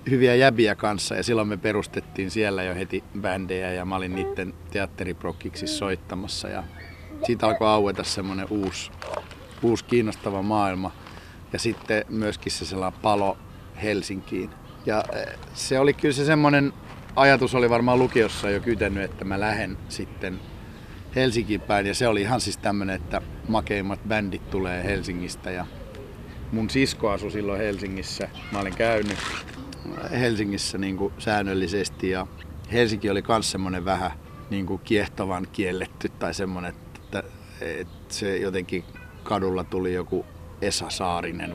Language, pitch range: Finnish, 90-105 Hz